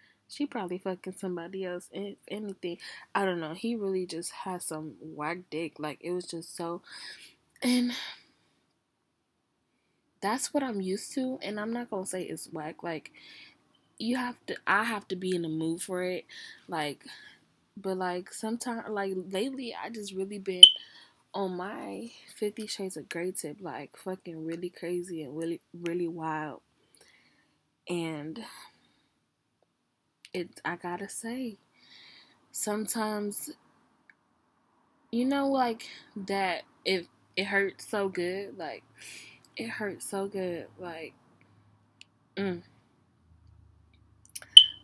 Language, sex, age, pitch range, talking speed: English, female, 10-29, 170-215 Hz, 125 wpm